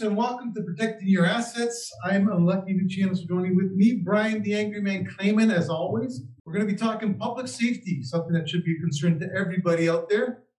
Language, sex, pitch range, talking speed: English, male, 155-195 Hz, 220 wpm